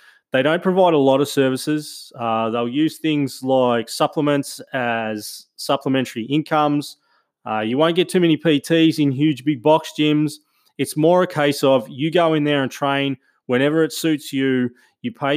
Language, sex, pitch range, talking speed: English, male, 125-150 Hz, 175 wpm